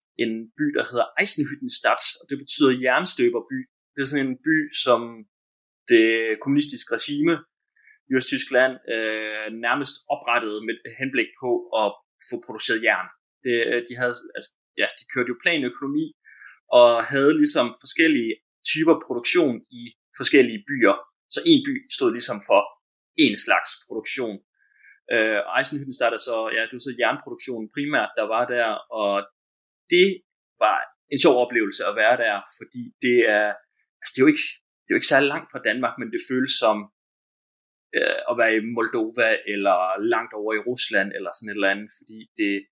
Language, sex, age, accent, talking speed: Danish, male, 20-39, native, 160 wpm